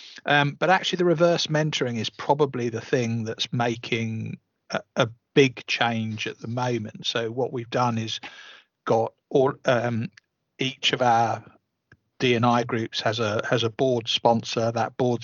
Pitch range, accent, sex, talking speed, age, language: 115-140 Hz, British, male, 160 wpm, 50-69, English